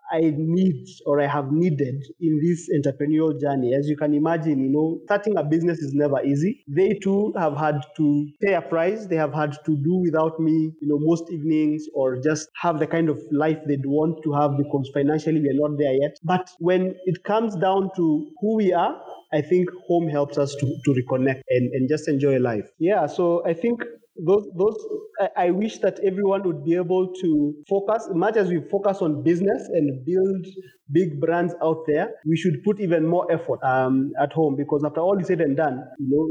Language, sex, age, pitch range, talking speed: English, male, 30-49, 145-180 Hz, 210 wpm